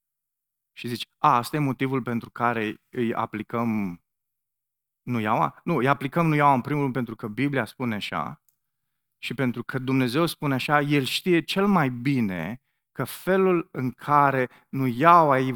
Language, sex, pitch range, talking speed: Romanian, male, 120-150 Hz, 160 wpm